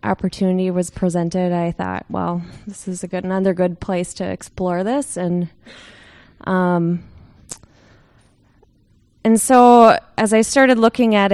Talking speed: 130 wpm